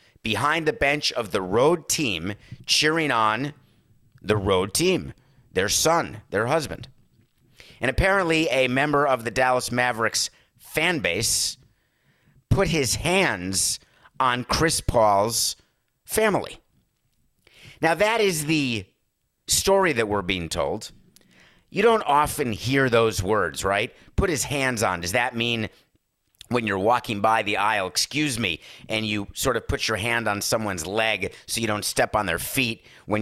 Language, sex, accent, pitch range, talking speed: English, male, American, 105-130 Hz, 150 wpm